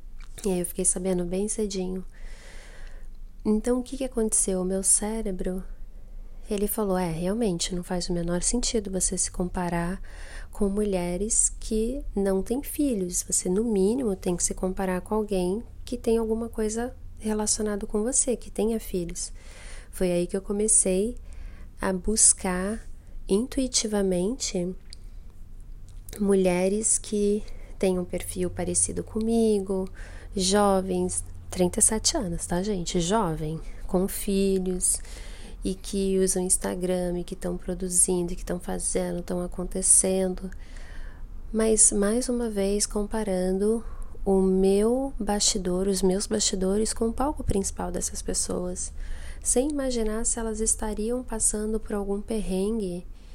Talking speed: 130 wpm